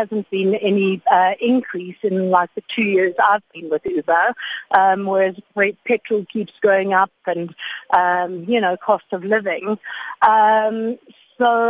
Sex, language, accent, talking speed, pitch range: female, English, British, 150 wpm, 190-230 Hz